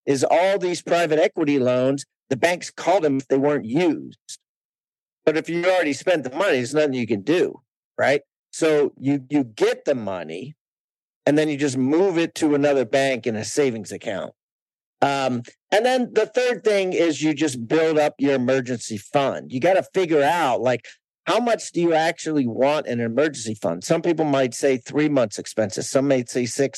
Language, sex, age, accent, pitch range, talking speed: English, male, 50-69, American, 130-160 Hz, 195 wpm